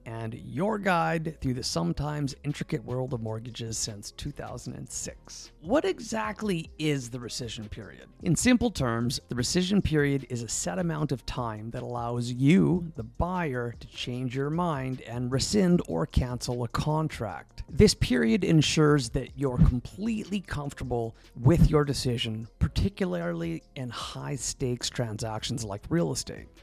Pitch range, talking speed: 115-160 Hz, 140 wpm